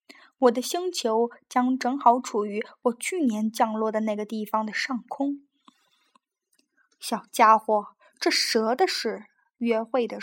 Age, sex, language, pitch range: 10-29, female, Chinese, 225-290 Hz